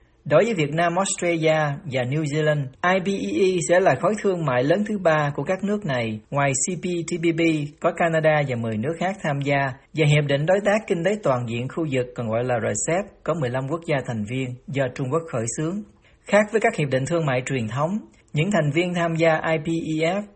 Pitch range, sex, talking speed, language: 130-175 Hz, male, 210 wpm, Vietnamese